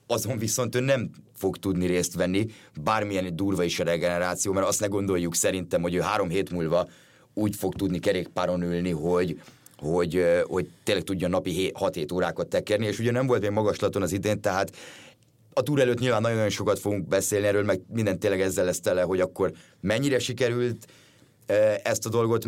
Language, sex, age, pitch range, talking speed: Hungarian, male, 30-49, 90-110 Hz, 185 wpm